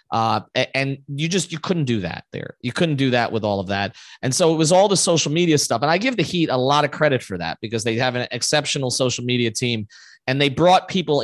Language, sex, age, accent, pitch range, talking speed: English, male, 30-49, American, 125-185 Hz, 260 wpm